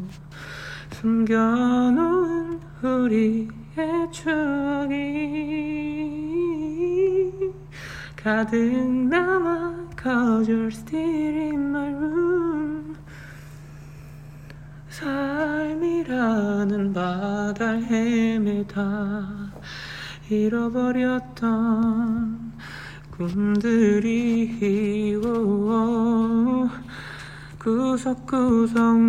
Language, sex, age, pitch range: Korean, male, 30-49, 205-285 Hz